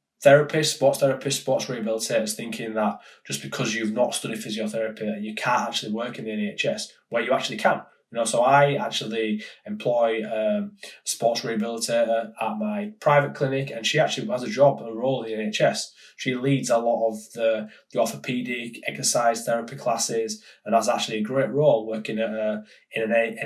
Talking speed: 185 wpm